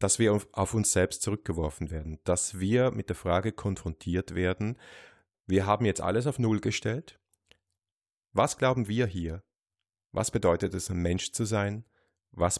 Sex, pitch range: male, 90-105 Hz